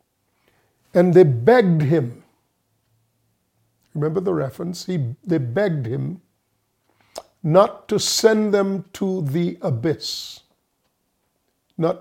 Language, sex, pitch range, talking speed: English, male, 150-195 Hz, 95 wpm